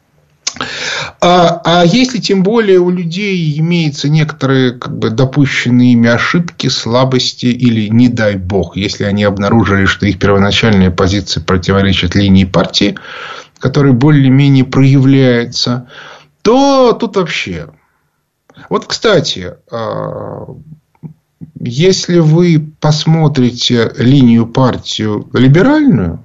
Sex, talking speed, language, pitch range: male, 100 wpm, Russian, 115-155 Hz